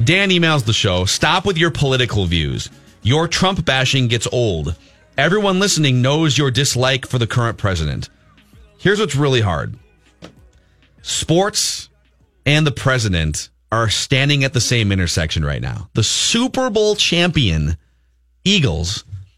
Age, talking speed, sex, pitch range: 30-49, 135 wpm, male, 95-150 Hz